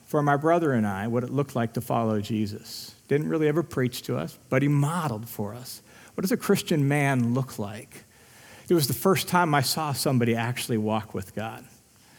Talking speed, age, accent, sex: 205 wpm, 40-59, American, male